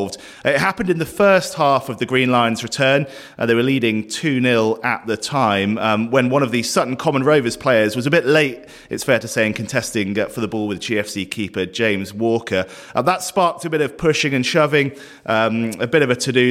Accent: British